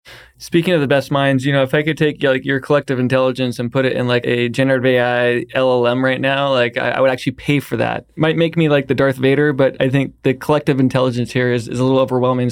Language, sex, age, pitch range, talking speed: English, male, 20-39, 125-145 Hz, 255 wpm